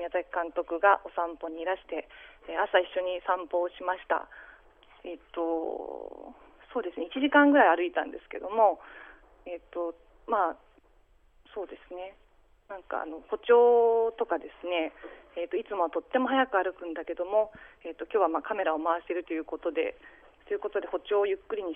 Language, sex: Japanese, female